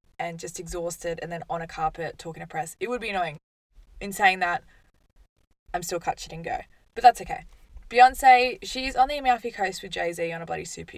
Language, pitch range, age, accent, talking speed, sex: English, 165-230 Hz, 20-39, Australian, 215 wpm, female